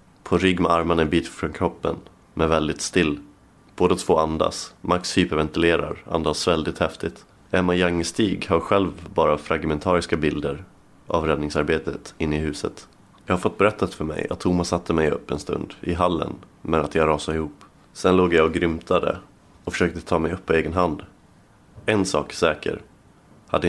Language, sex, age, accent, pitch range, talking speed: Swedish, male, 30-49, native, 80-90 Hz, 170 wpm